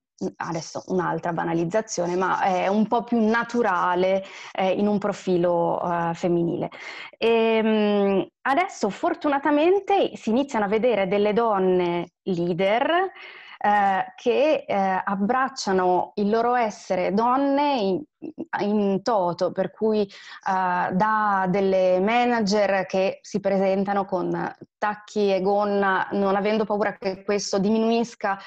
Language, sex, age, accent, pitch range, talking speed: Italian, female, 20-39, native, 185-225 Hz, 115 wpm